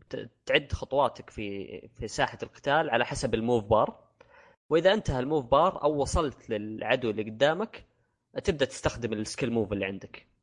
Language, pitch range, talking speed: Arabic, 110-135 Hz, 145 wpm